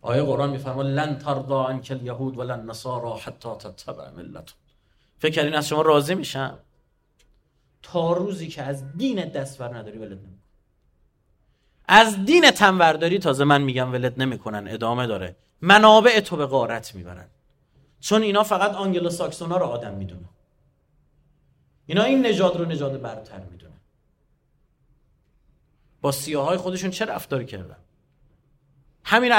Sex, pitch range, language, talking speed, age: male, 135-185 Hz, Persian, 130 wpm, 30-49